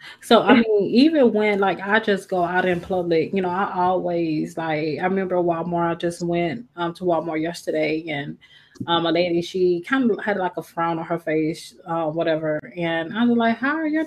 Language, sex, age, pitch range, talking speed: English, female, 20-39, 165-195 Hz, 215 wpm